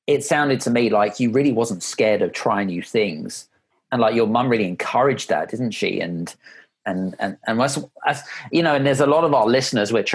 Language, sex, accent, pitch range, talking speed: English, male, British, 105-135 Hz, 215 wpm